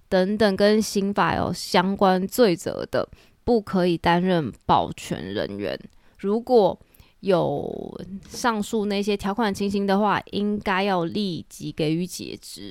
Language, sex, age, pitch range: Chinese, female, 20-39, 180-220 Hz